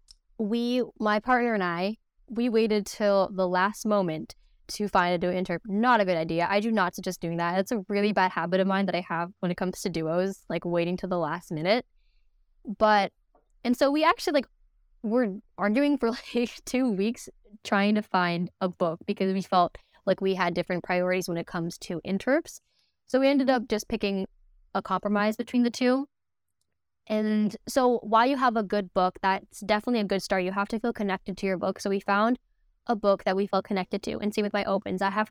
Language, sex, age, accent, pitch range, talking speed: English, female, 10-29, American, 185-225 Hz, 215 wpm